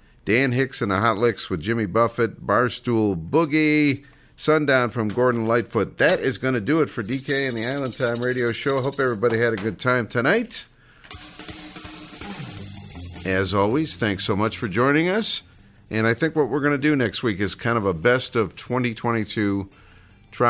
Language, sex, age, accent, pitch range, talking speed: English, male, 50-69, American, 105-140 Hz, 180 wpm